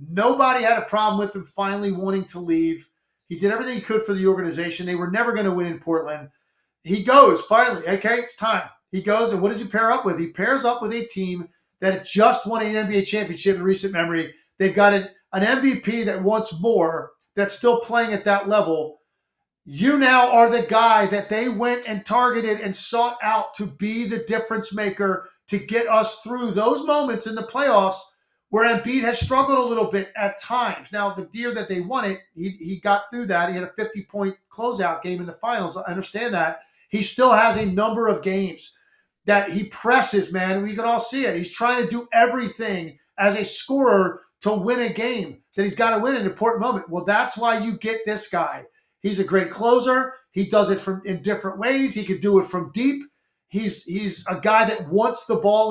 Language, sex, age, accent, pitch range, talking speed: English, male, 50-69, American, 190-235 Hz, 210 wpm